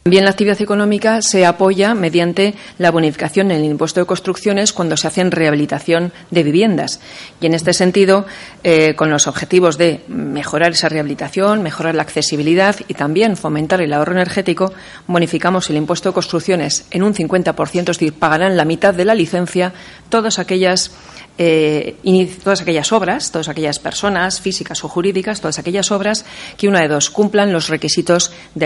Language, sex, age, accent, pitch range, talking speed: Spanish, female, 40-59, Spanish, 155-185 Hz, 170 wpm